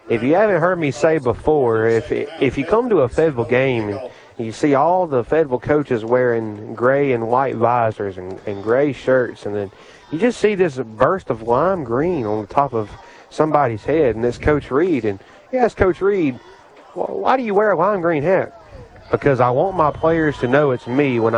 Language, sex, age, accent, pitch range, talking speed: English, male, 30-49, American, 115-150 Hz, 210 wpm